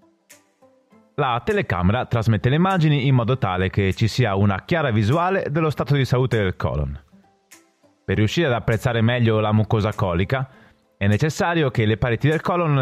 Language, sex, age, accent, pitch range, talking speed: Italian, male, 30-49, native, 100-135 Hz, 165 wpm